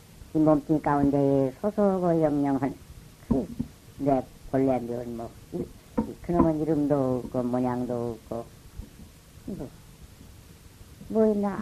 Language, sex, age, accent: Korean, male, 60-79, American